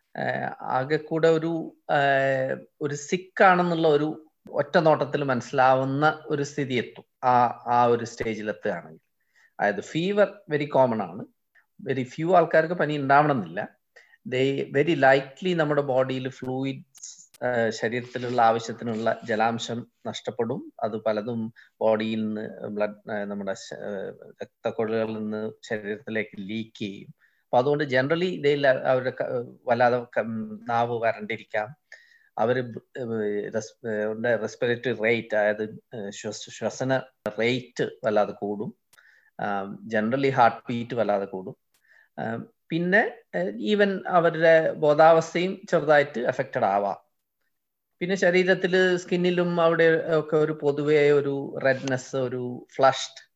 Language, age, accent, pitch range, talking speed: Malayalam, 20-39, native, 115-155 Hz, 90 wpm